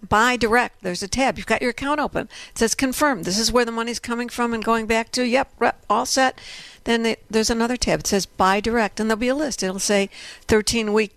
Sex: female